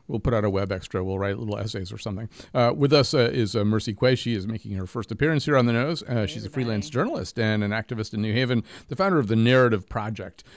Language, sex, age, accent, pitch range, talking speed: English, male, 40-59, American, 105-130 Hz, 265 wpm